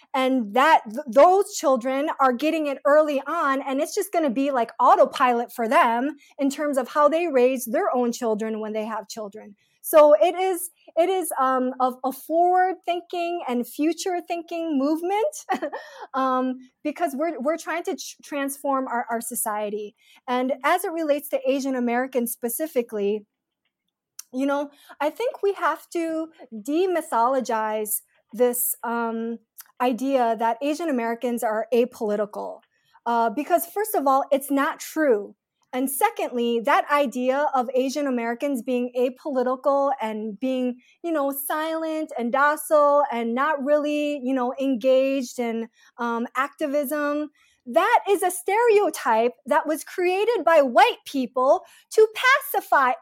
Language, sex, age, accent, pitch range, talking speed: English, female, 20-39, American, 250-330 Hz, 145 wpm